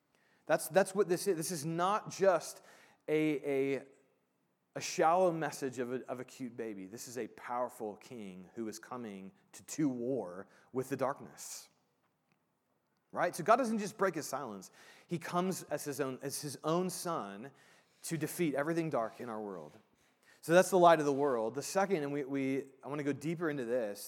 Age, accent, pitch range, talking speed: 30-49, American, 130-175 Hz, 190 wpm